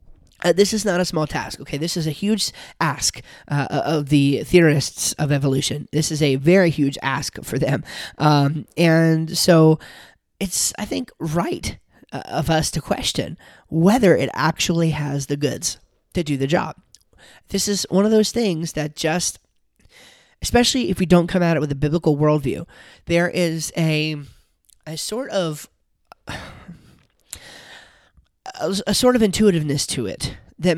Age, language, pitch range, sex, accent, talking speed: 20-39, English, 145-175 Hz, male, American, 155 wpm